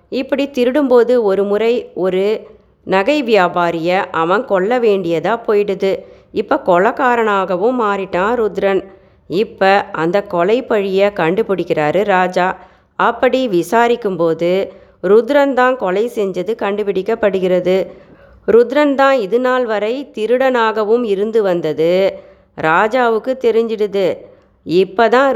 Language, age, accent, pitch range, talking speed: Tamil, 30-49, native, 185-235 Hz, 85 wpm